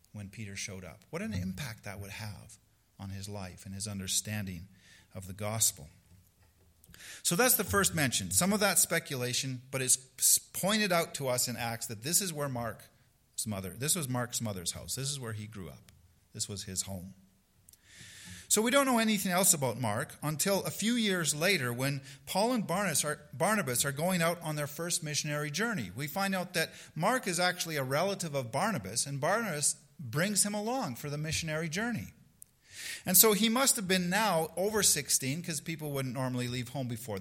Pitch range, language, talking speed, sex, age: 110-170 Hz, English, 190 wpm, male, 40-59